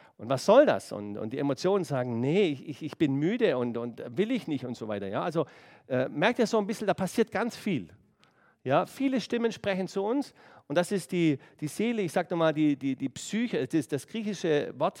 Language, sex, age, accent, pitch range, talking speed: German, male, 50-69, German, 145-205 Hz, 230 wpm